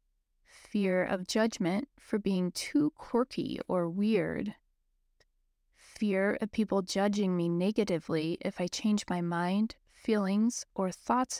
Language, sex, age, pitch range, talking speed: English, female, 20-39, 180-225 Hz, 120 wpm